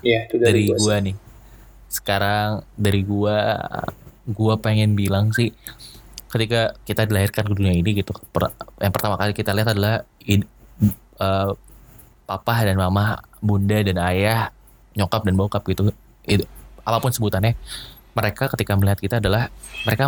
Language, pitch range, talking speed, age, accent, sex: Indonesian, 100-115 Hz, 130 wpm, 20-39, native, male